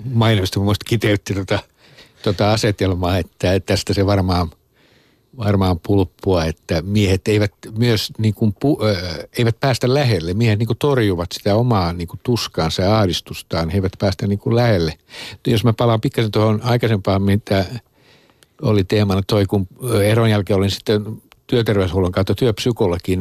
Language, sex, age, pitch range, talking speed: Finnish, male, 60-79, 95-110 Hz, 140 wpm